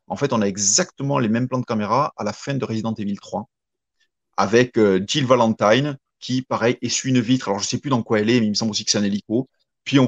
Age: 30-49